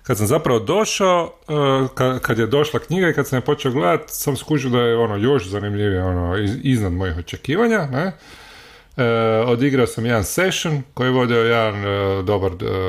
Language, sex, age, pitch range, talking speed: Croatian, male, 30-49, 95-125 Hz, 165 wpm